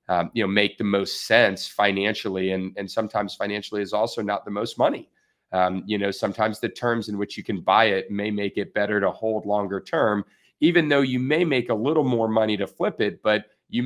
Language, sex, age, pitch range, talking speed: English, male, 40-59, 100-110 Hz, 225 wpm